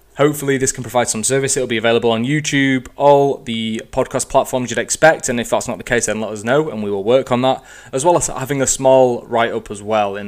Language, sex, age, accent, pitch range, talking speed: English, male, 20-39, British, 115-135 Hz, 250 wpm